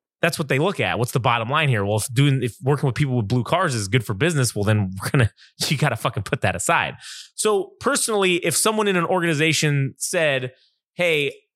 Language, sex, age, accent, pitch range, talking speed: English, male, 20-39, American, 115-160 Hz, 225 wpm